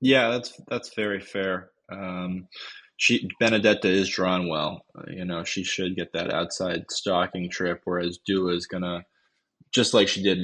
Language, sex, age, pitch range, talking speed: English, male, 20-39, 90-105 Hz, 170 wpm